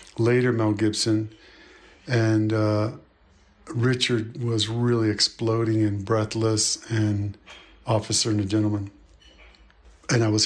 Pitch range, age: 110-120 Hz, 50-69